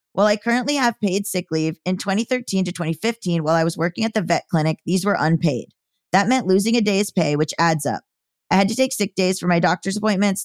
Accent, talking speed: American, 235 wpm